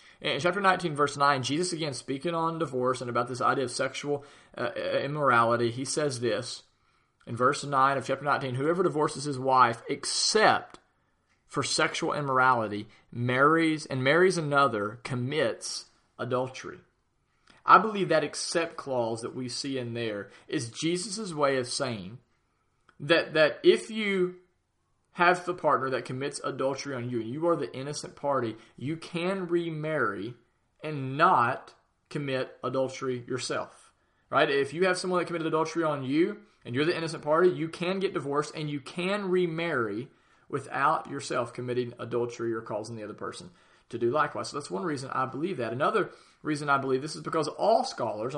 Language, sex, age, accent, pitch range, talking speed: English, male, 40-59, American, 130-165 Hz, 165 wpm